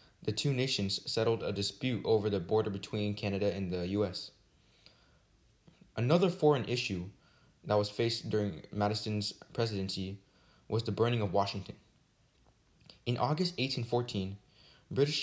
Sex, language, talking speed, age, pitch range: male, English, 125 wpm, 20-39, 100-125 Hz